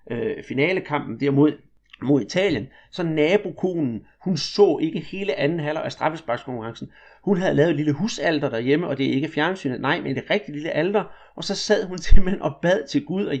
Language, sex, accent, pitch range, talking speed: Danish, male, native, 145-185 Hz, 195 wpm